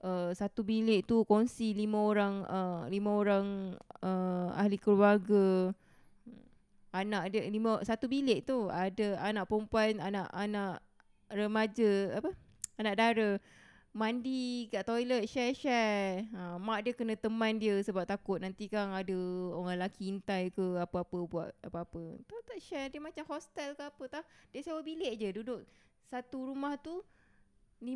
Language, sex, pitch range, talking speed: Malay, female, 200-255 Hz, 145 wpm